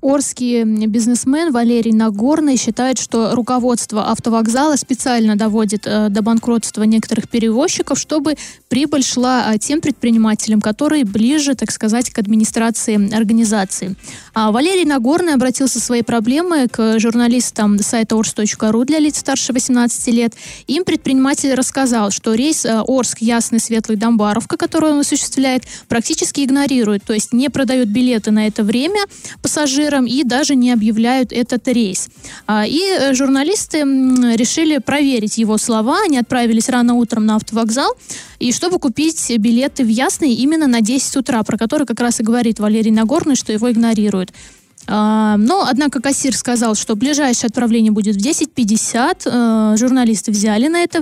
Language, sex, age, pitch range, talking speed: Russian, female, 20-39, 225-275 Hz, 135 wpm